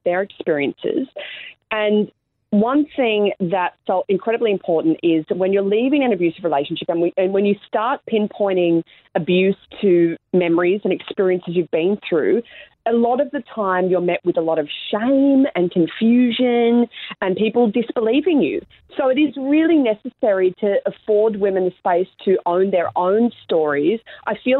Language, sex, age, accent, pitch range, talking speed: English, female, 30-49, Australian, 180-235 Hz, 160 wpm